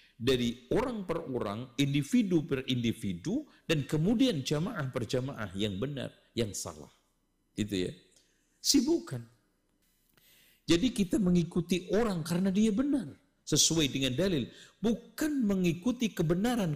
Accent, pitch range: native, 120-195 Hz